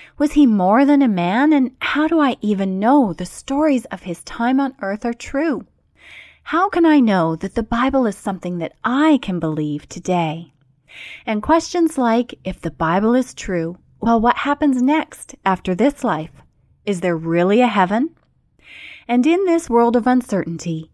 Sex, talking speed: female, 175 wpm